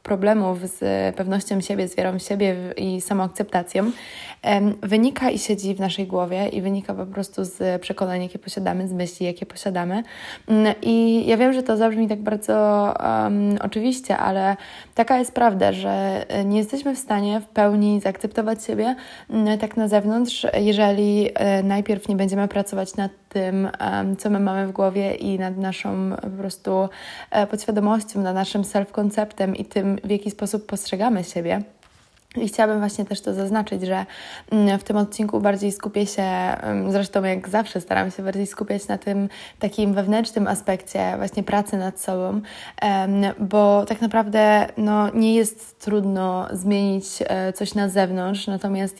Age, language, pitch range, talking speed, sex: 20-39, Polish, 195-215 Hz, 150 wpm, female